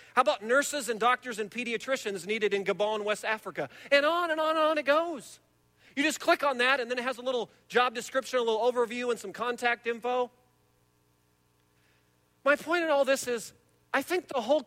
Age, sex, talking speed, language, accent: 40-59, male, 205 wpm, English, American